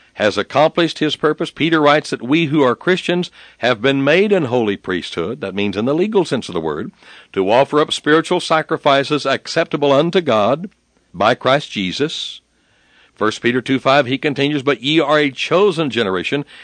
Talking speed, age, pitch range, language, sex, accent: 175 wpm, 60-79, 105-150 Hz, English, male, American